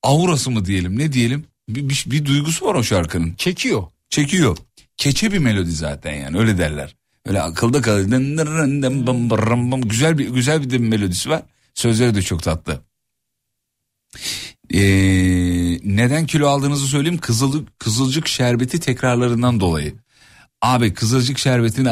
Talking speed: 130 wpm